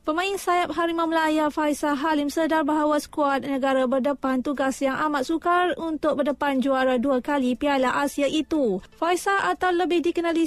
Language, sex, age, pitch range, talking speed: Malay, female, 20-39, 265-315 Hz, 155 wpm